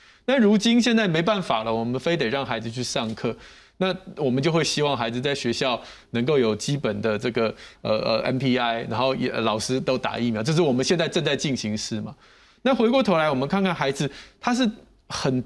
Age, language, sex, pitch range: 20-39, Chinese, male, 130-195 Hz